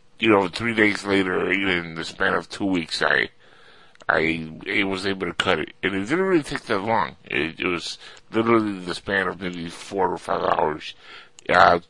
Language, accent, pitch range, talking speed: English, American, 90-105 Hz, 200 wpm